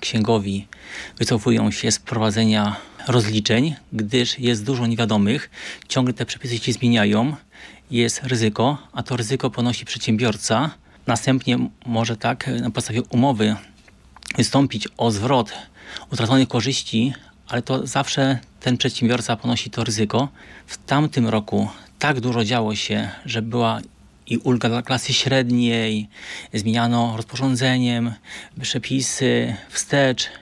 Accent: native